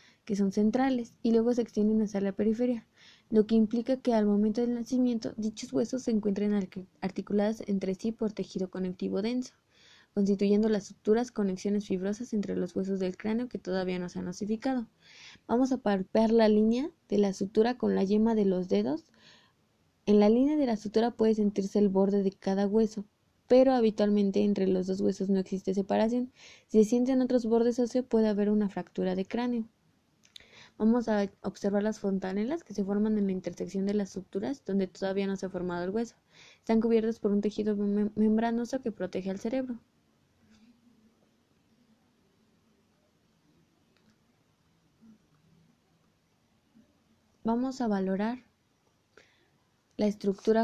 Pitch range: 200-230 Hz